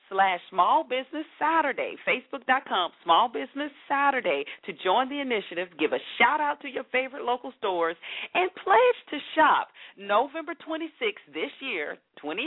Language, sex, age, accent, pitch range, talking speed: English, female, 40-59, American, 190-315 Hz, 150 wpm